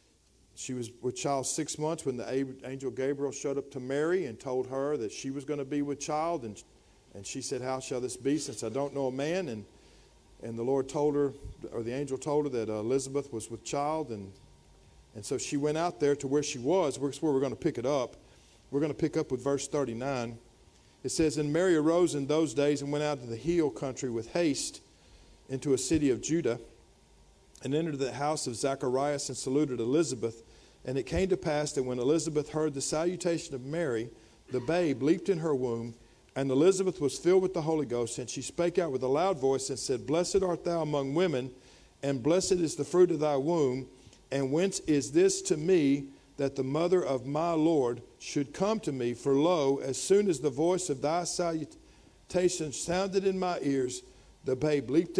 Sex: male